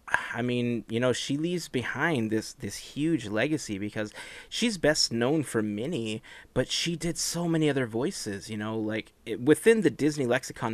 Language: English